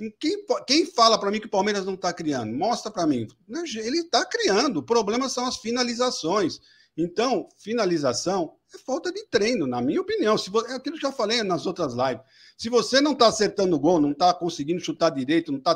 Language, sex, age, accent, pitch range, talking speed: Portuguese, male, 50-69, Brazilian, 160-250 Hz, 215 wpm